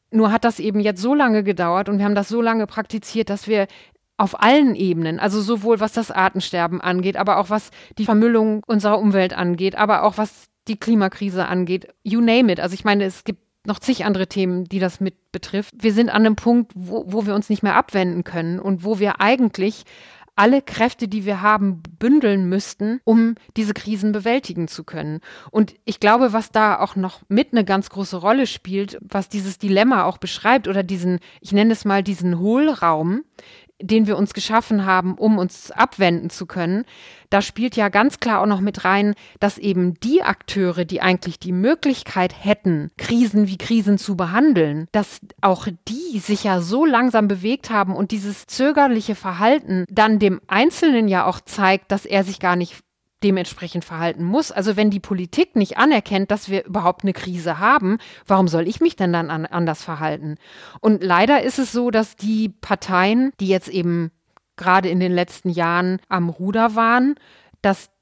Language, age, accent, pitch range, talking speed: German, 30-49, German, 185-220 Hz, 185 wpm